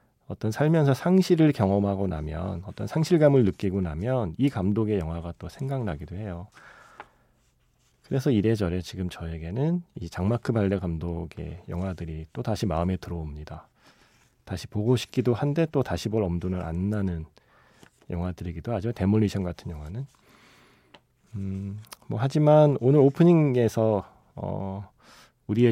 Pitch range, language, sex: 90-125 Hz, Korean, male